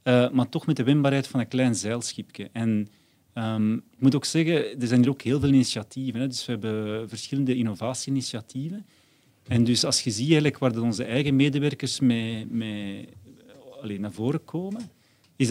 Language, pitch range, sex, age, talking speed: Dutch, 115-140 Hz, male, 40-59, 180 wpm